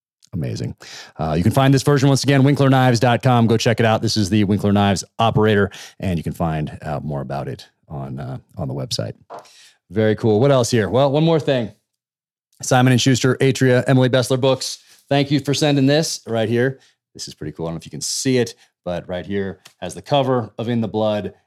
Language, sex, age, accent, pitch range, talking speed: English, male, 30-49, American, 80-115 Hz, 220 wpm